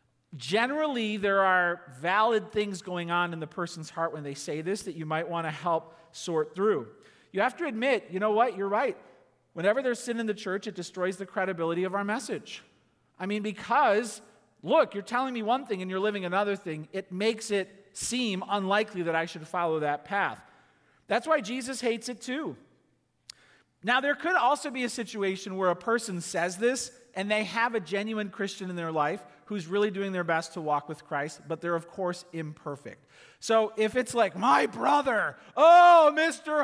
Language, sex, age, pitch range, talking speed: English, male, 40-59, 170-230 Hz, 195 wpm